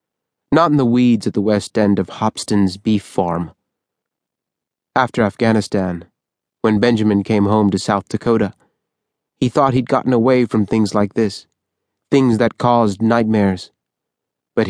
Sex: male